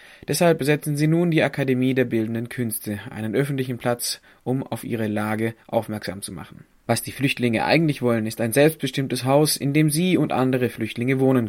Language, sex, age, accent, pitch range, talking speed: German, male, 20-39, German, 115-140 Hz, 185 wpm